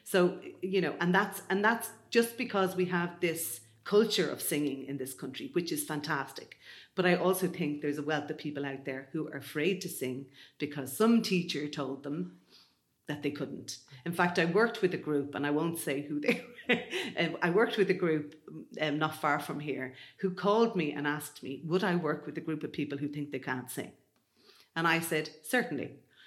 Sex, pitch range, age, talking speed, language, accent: female, 140-175 Hz, 40-59, 210 wpm, English, Irish